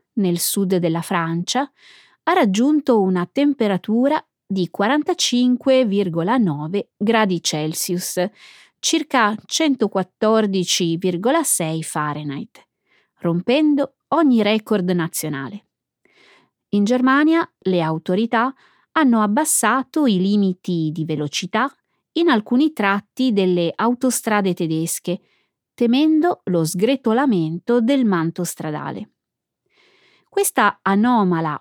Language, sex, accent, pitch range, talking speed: Italian, female, native, 180-265 Hz, 80 wpm